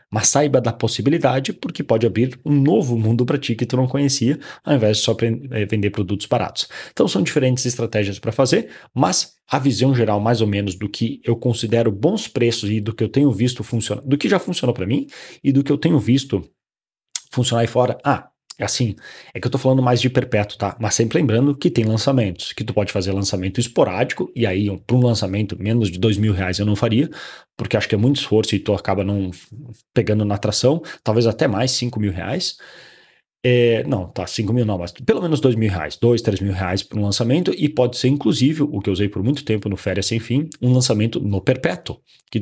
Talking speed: 225 wpm